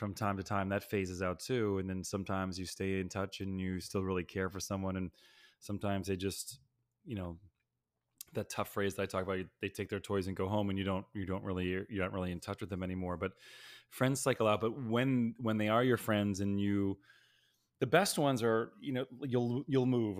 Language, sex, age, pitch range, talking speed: English, male, 20-39, 95-115 Hz, 230 wpm